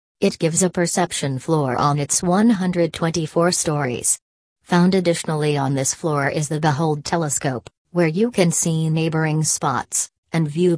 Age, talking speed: 40-59, 145 wpm